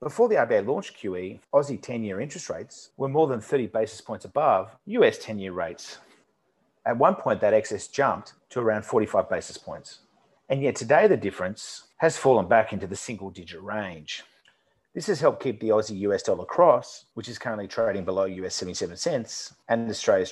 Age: 30-49